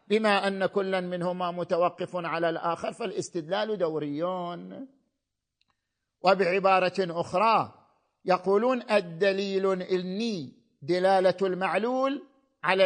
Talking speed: 80 wpm